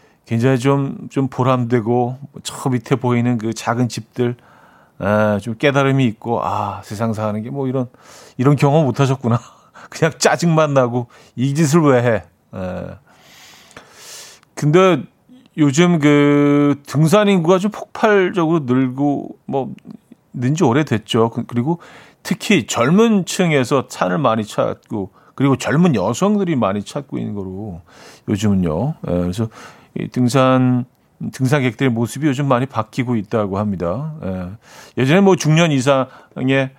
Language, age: Korean, 40-59